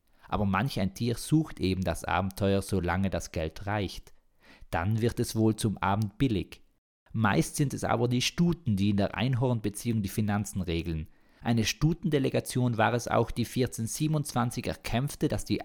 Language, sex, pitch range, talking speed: German, male, 95-125 Hz, 160 wpm